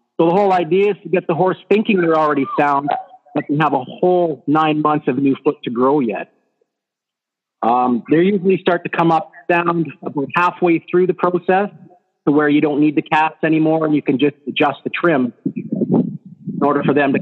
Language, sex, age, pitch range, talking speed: English, male, 40-59, 140-175 Hz, 205 wpm